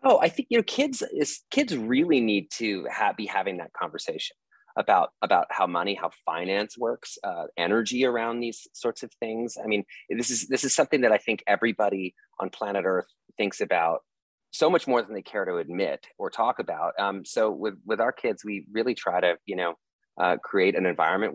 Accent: American